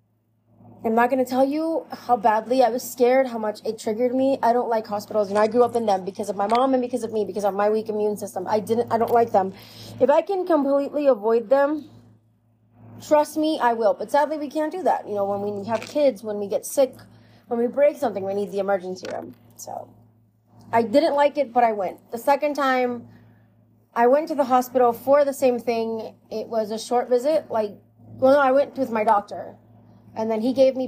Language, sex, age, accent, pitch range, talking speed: English, female, 30-49, American, 215-270 Hz, 230 wpm